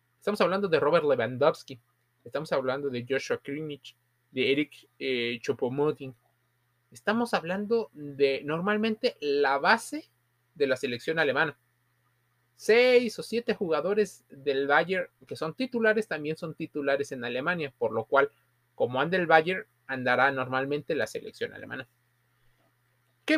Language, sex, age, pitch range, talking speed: Spanish, male, 30-49, 125-180 Hz, 130 wpm